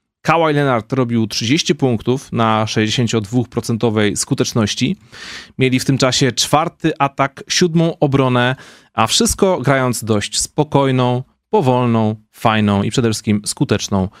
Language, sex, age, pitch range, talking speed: Polish, male, 30-49, 110-130 Hz, 115 wpm